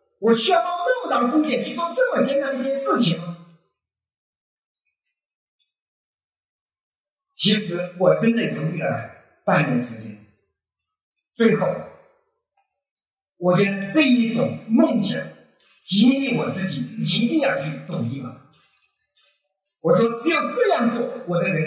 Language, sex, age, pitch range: Chinese, male, 50-69, 175-280 Hz